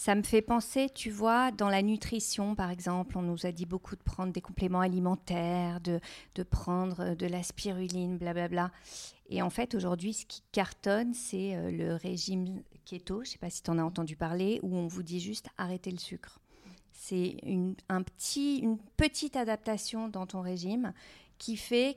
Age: 40-59